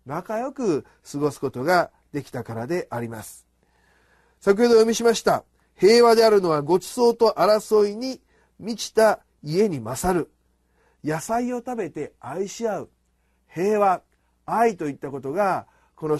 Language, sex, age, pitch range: Japanese, male, 40-59, 130-200 Hz